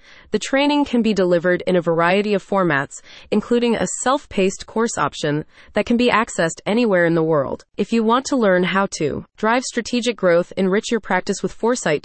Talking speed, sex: 190 wpm, female